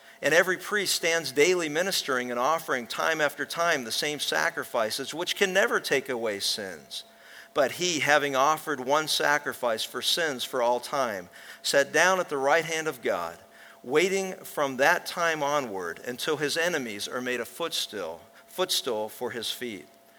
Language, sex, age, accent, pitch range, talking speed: English, male, 50-69, American, 130-165 Hz, 165 wpm